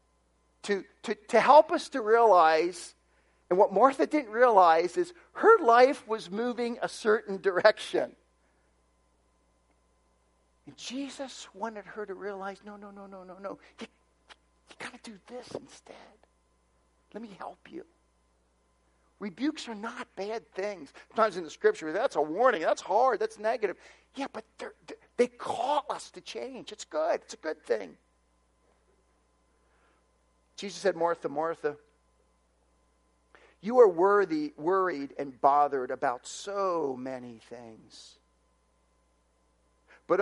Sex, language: male, English